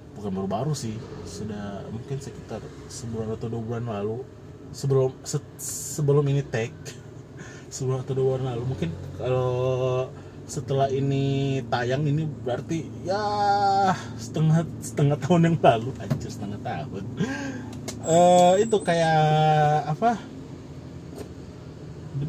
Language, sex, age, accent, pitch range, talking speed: Indonesian, male, 20-39, native, 125-155 Hz, 115 wpm